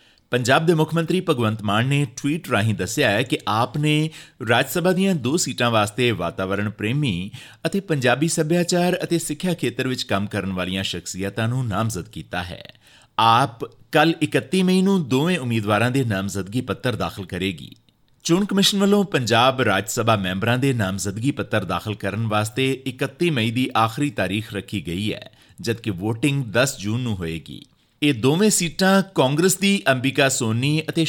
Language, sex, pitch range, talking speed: Punjabi, male, 105-155 Hz, 160 wpm